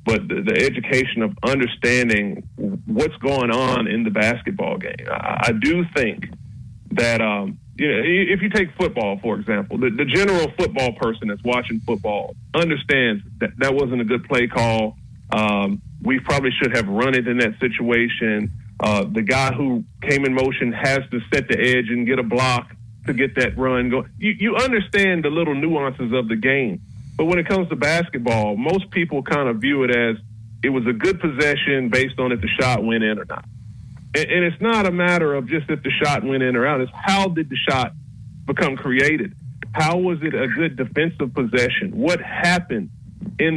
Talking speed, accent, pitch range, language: 195 wpm, American, 120-160 Hz, English